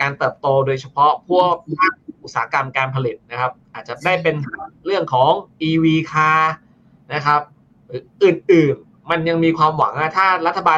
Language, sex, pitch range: Thai, male, 135-180 Hz